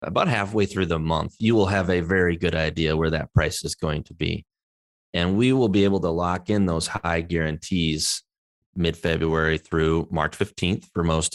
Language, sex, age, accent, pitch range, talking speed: English, male, 30-49, American, 85-105 Hz, 190 wpm